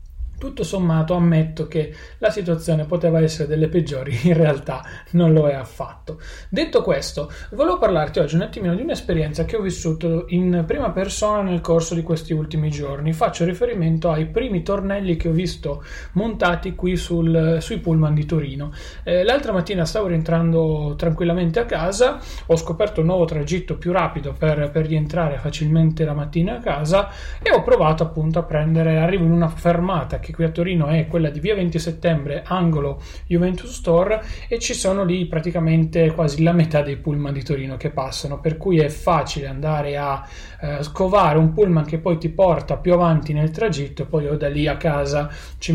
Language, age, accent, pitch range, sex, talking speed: Italian, 30-49, native, 150-175 Hz, male, 180 wpm